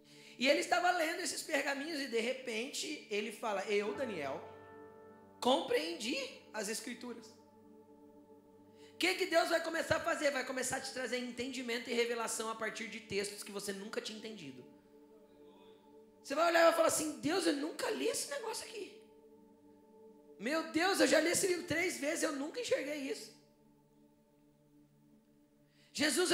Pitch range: 180-300 Hz